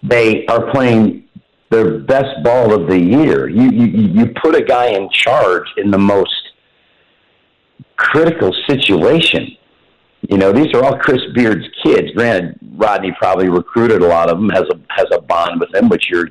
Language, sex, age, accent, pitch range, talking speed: English, male, 50-69, American, 85-105 Hz, 175 wpm